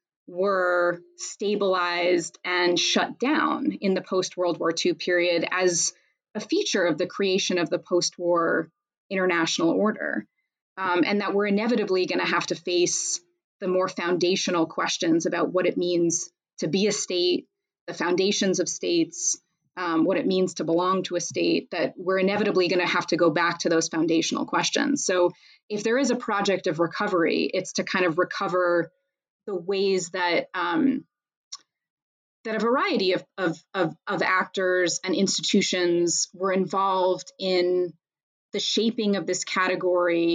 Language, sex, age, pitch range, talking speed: English, female, 20-39, 175-205 Hz, 155 wpm